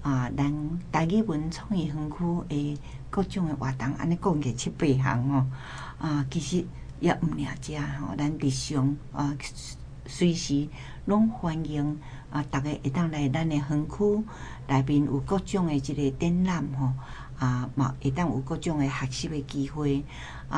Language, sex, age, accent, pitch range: Chinese, female, 60-79, American, 135-165 Hz